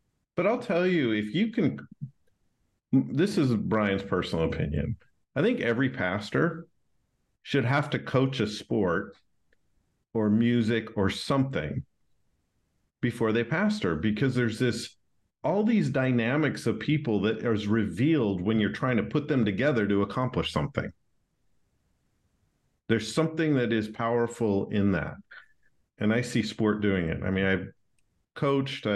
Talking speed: 140 wpm